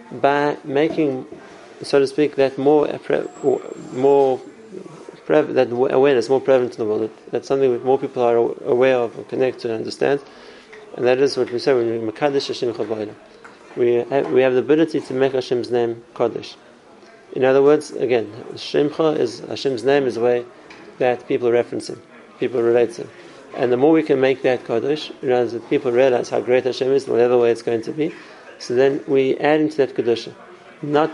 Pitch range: 120-145 Hz